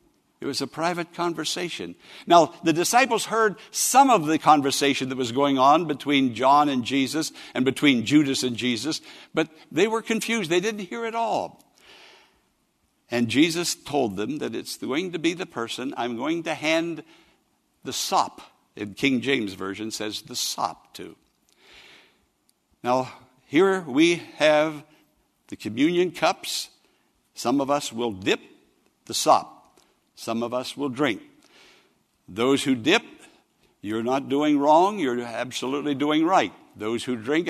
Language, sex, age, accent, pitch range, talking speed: English, male, 60-79, American, 135-200 Hz, 150 wpm